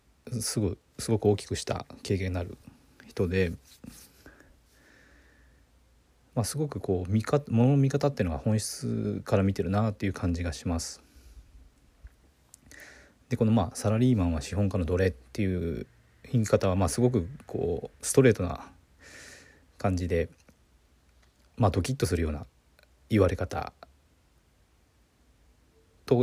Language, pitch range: Japanese, 85-115 Hz